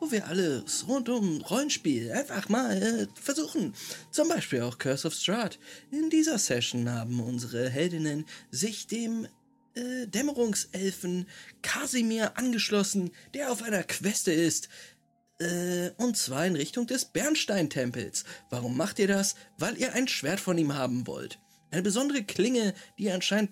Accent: German